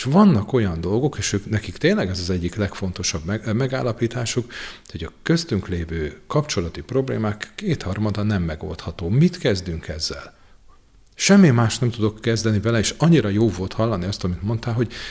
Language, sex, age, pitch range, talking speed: Hungarian, male, 40-59, 95-125 Hz, 160 wpm